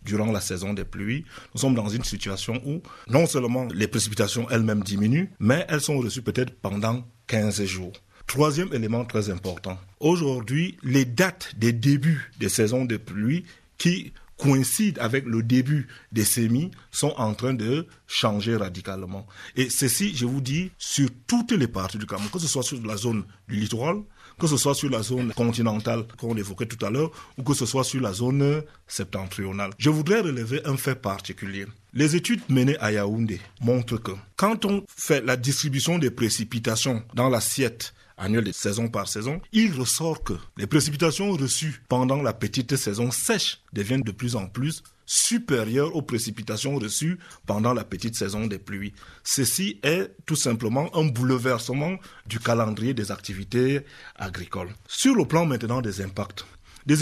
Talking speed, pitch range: 170 wpm, 105-145 Hz